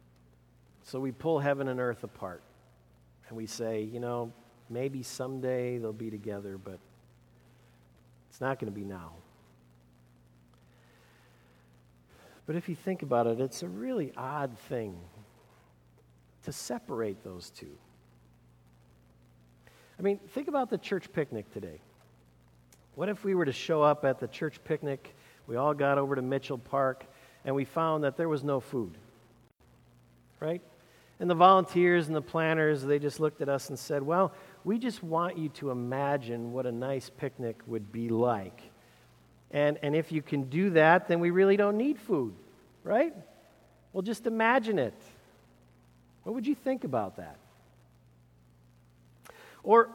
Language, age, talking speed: English, 50-69, 150 wpm